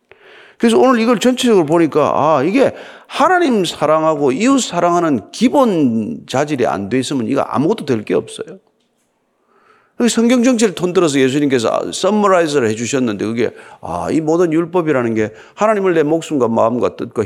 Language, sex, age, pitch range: Korean, male, 40-59, 150-225 Hz